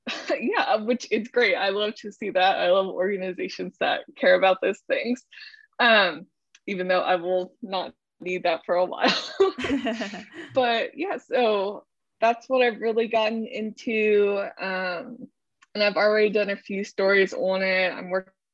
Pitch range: 185-235 Hz